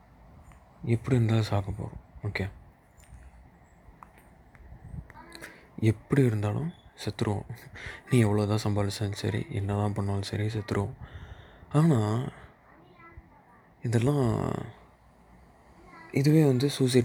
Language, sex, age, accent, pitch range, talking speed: Tamil, male, 20-39, native, 100-125 Hz, 75 wpm